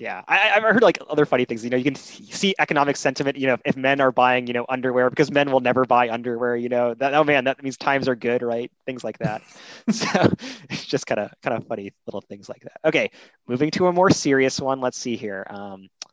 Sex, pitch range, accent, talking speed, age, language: male, 120-145 Hz, American, 245 wpm, 20-39, English